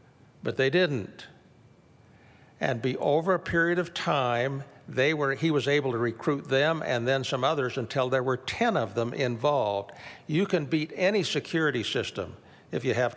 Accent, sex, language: American, male, English